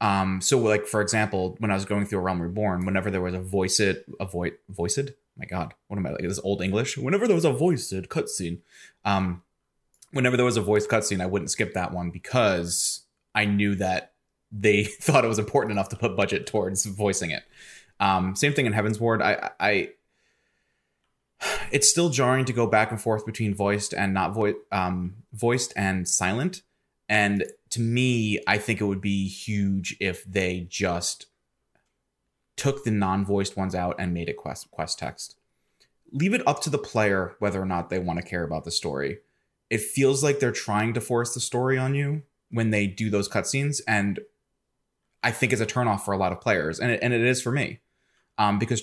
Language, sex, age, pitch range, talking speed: English, male, 20-39, 95-125 Hz, 205 wpm